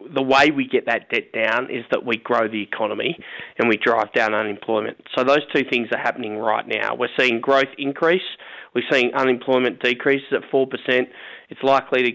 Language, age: English, 20-39